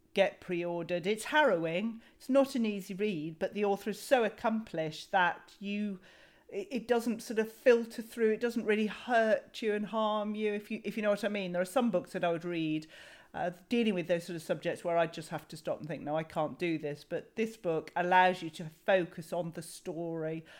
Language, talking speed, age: English, 225 wpm, 40-59